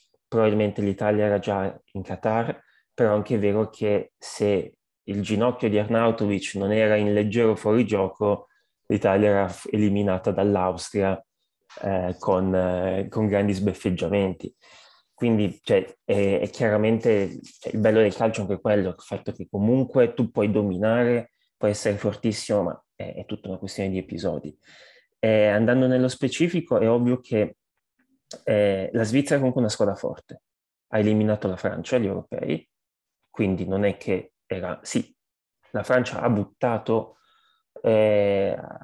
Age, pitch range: 20-39, 100-115 Hz